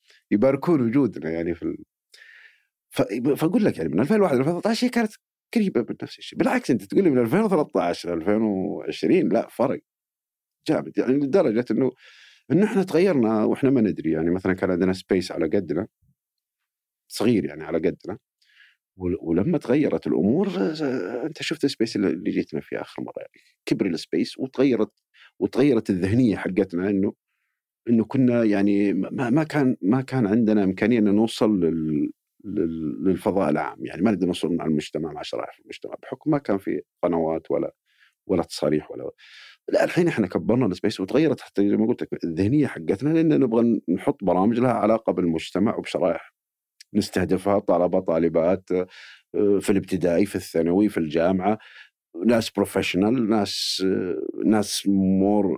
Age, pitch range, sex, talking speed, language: 50-69, 95-130 Hz, male, 150 wpm, Arabic